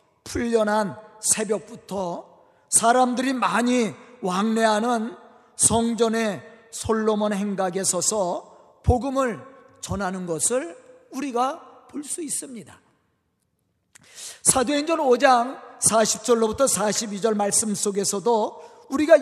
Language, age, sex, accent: Korean, 40-59, male, native